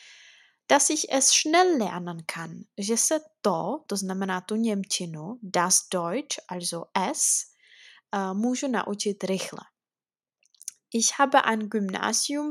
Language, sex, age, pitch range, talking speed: Czech, female, 20-39, 190-245 Hz, 120 wpm